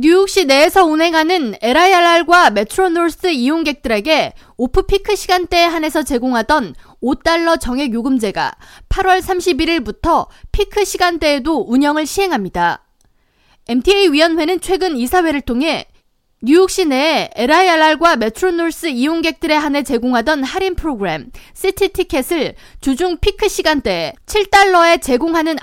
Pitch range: 265-365 Hz